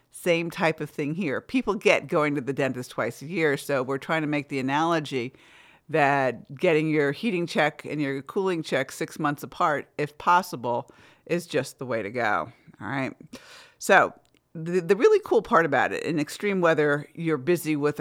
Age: 50-69